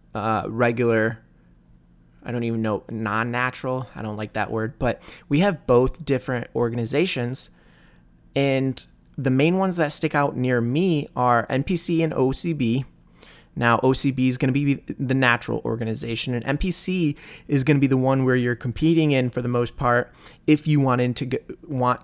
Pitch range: 115-140 Hz